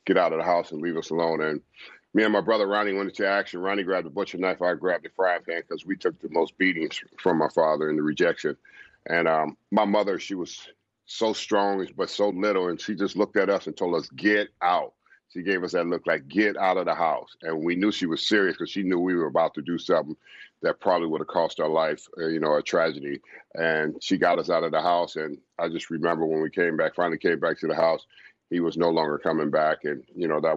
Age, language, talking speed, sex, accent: 40-59, English, 260 wpm, male, American